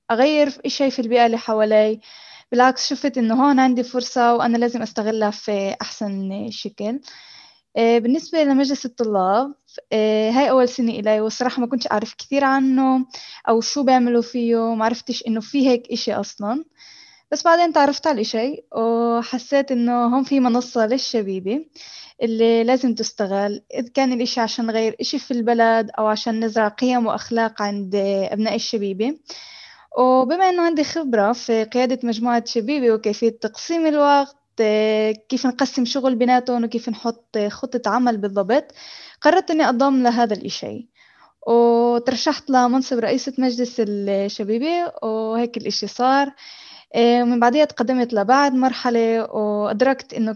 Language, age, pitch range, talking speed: Arabic, 10-29, 220-265 Hz, 135 wpm